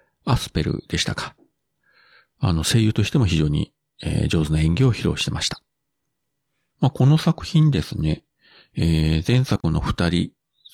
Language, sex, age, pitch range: Japanese, male, 40-59, 85-125 Hz